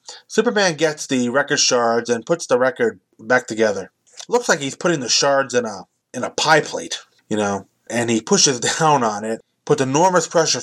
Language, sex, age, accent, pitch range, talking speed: English, male, 20-39, American, 115-155 Hz, 190 wpm